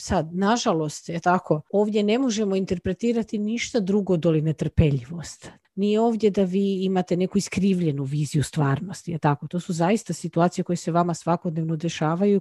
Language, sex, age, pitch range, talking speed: Croatian, female, 40-59, 170-220 Hz, 155 wpm